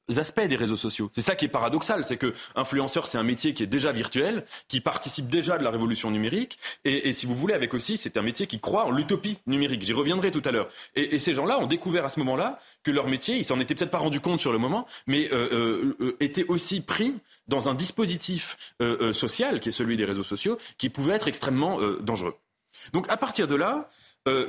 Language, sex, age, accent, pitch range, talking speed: French, male, 30-49, French, 120-180 Hz, 245 wpm